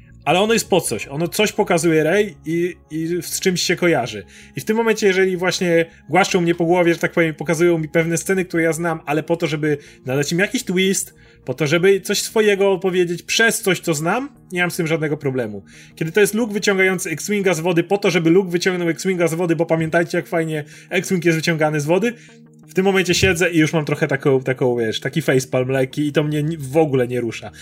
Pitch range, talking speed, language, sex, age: 150-185 Hz, 230 wpm, Polish, male, 30-49